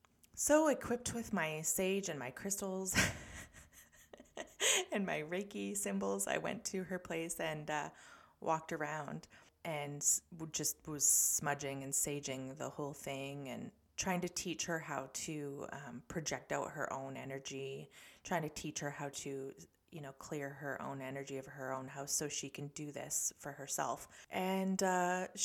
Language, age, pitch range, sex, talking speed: English, 20-39, 140-175 Hz, female, 160 wpm